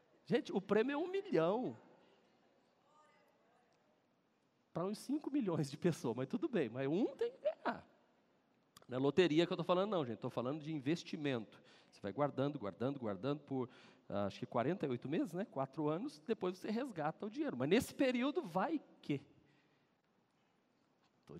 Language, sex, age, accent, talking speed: Portuguese, male, 40-59, Brazilian, 165 wpm